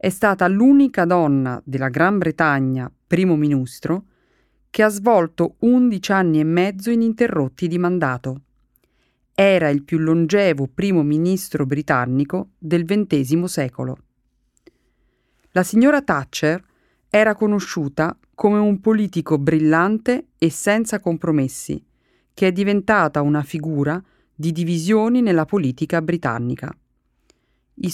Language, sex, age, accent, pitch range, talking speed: Italian, female, 40-59, native, 150-200 Hz, 110 wpm